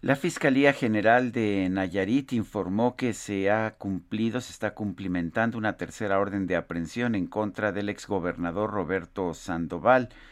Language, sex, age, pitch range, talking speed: Spanish, male, 50-69, 90-110 Hz, 140 wpm